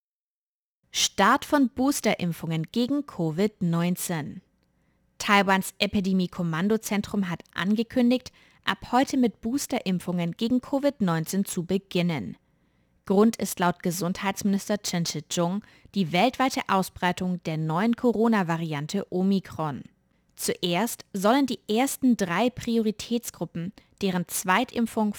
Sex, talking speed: female, 90 wpm